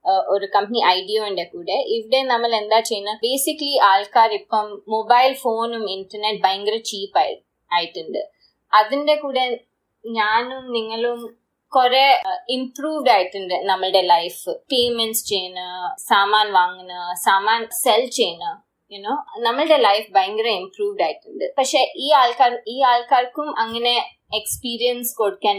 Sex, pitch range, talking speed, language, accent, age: female, 195-270 Hz, 110 wpm, Malayalam, native, 20-39